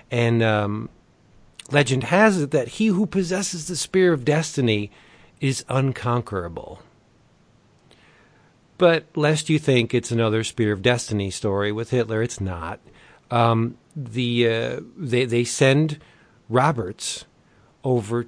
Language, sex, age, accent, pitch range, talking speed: English, male, 40-59, American, 110-140 Hz, 120 wpm